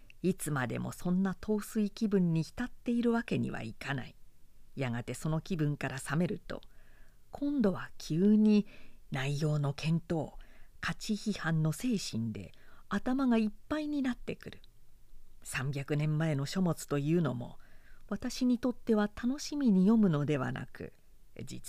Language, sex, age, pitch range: Japanese, female, 50-69, 145-235 Hz